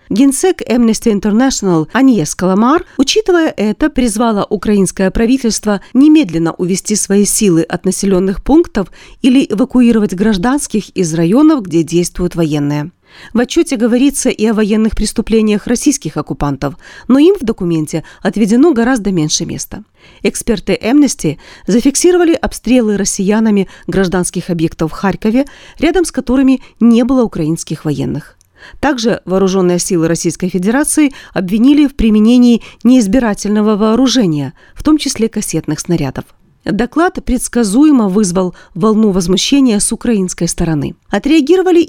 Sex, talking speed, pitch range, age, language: female, 115 wpm, 180-255 Hz, 40-59, Ukrainian